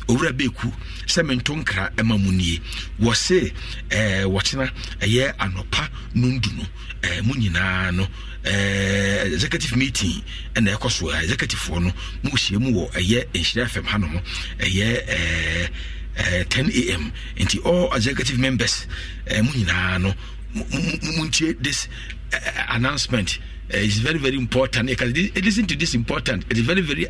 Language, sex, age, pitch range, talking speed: English, male, 50-69, 100-155 Hz, 135 wpm